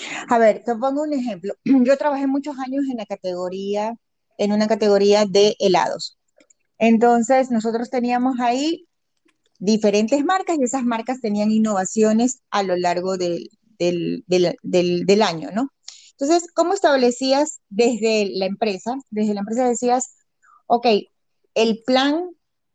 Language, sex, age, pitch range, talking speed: Spanish, female, 30-49, 200-255 Hz, 125 wpm